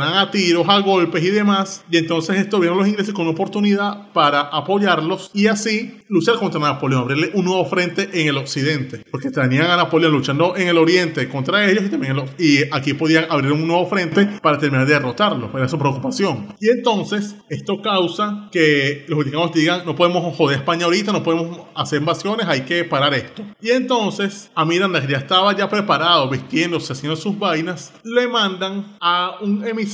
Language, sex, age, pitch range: Spanish, male, 30-49, 155-205 Hz